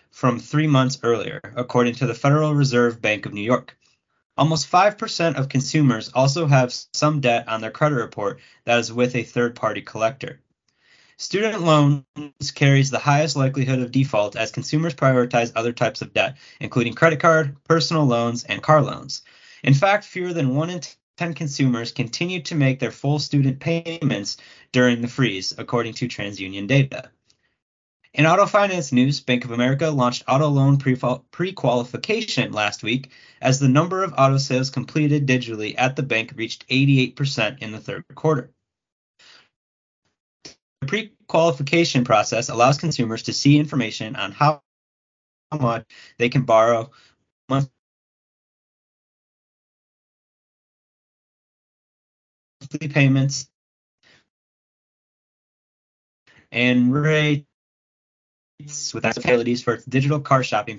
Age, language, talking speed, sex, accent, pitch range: 20-39, English, 130 wpm, male, American, 120-150 Hz